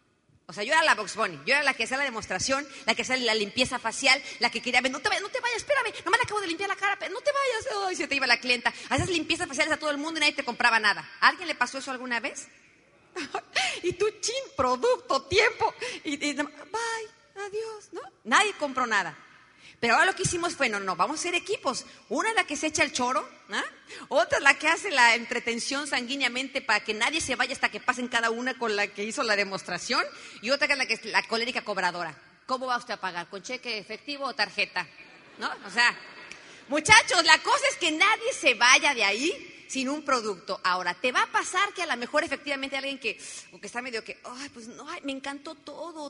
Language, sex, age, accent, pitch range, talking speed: Spanish, female, 40-59, Mexican, 235-345 Hz, 240 wpm